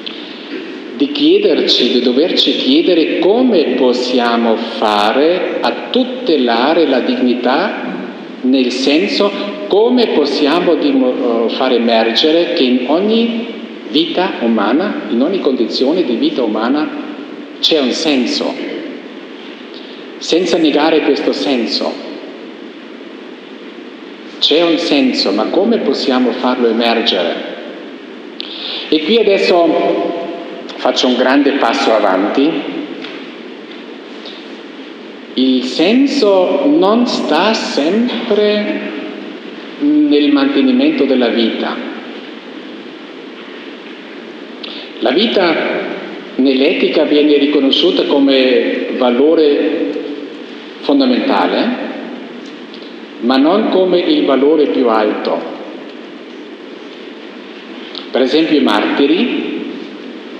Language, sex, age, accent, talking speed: Italian, male, 50-69, native, 80 wpm